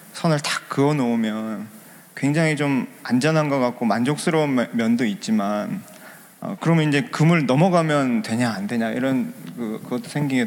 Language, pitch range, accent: Korean, 130-190 Hz, native